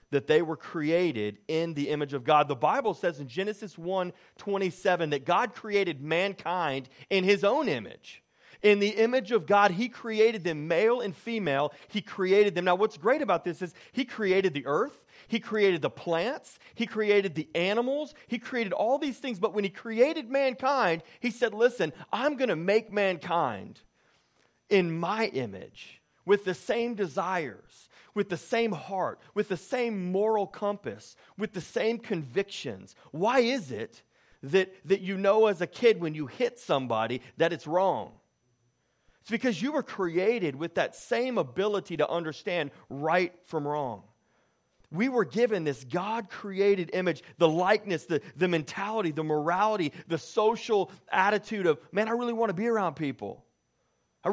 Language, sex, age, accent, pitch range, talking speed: English, male, 30-49, American, 165-220 Hz, 165 wpm